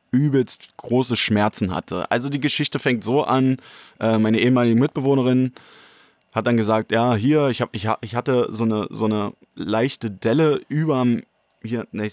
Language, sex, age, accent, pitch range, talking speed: German, male, 20-39, German, 110-130 Hz, 145 wpm